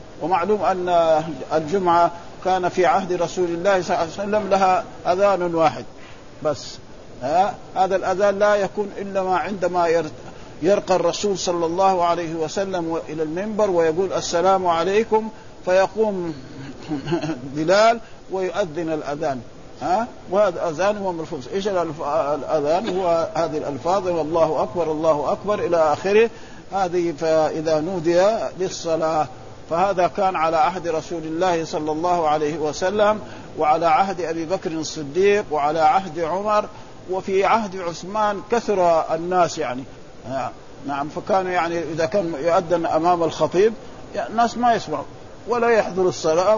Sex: male